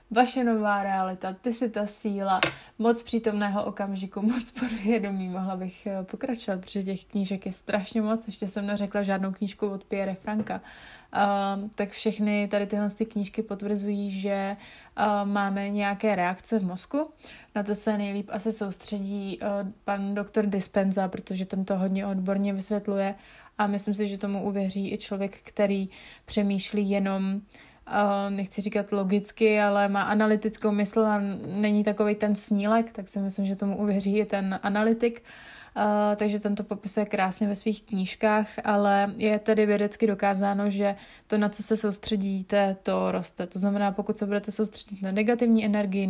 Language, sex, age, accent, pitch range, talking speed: Czech, female, 20-39, native, 195-215 Hz, 155 wpm